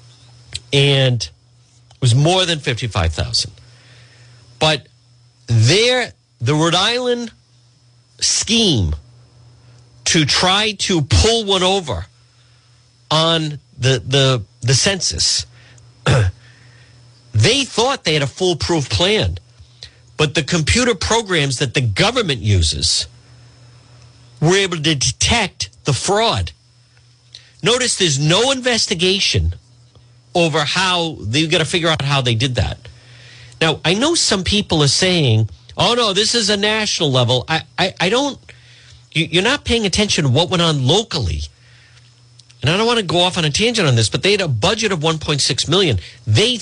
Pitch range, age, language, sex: 120-170 Hz, 50-69, English, male